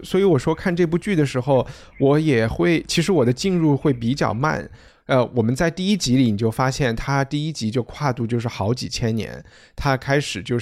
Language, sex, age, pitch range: Chinese, male, 20-39, 110-135 Hz